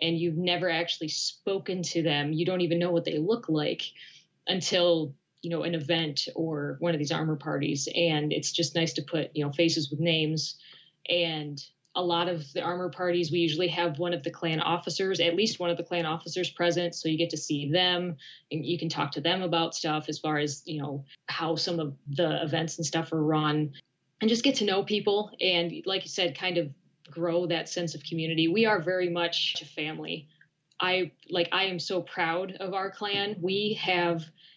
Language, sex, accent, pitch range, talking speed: English, female, American, 160-180 Hz, 210 wpm